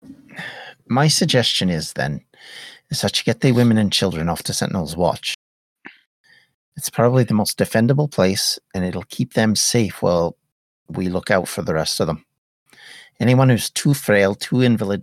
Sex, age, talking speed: male, 50-69, 170 wpm